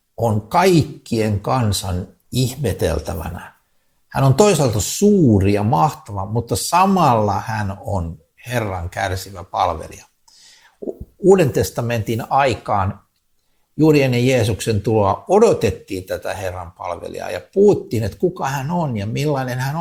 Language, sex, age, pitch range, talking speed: Finnish, male, 60-79, 95-135 Hz, 110 wpm